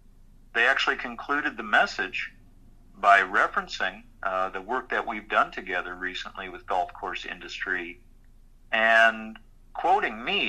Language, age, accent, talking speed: English, 40-59, American, 125 wpm